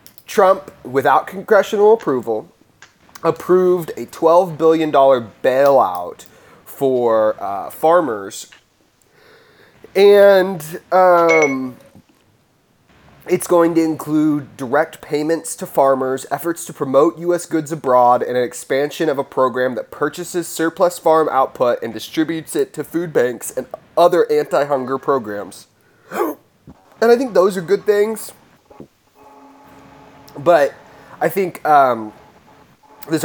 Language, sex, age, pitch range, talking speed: English, male, 20-39, 135-185 Hz, 110 wpm